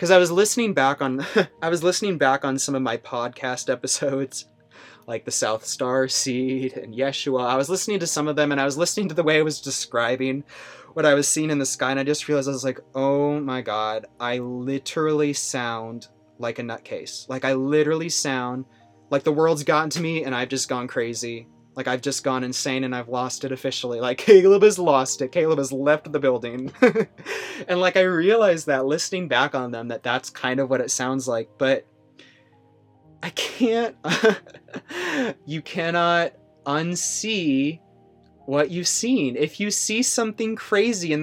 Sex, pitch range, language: male, 130-175 Hz, English